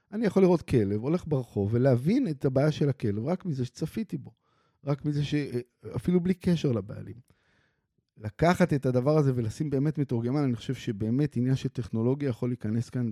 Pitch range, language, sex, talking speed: 115-150 Hz, Hebrew, male, 165 wpm